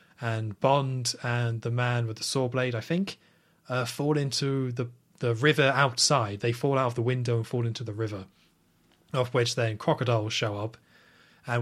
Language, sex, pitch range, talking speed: English, male, 110-130 Hz, 185 wpm